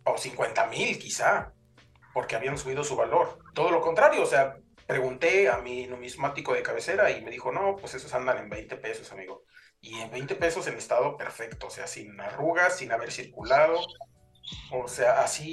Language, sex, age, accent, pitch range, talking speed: Spanish, male, 40-59, Mexican, 125-165 Hz, 185 wpm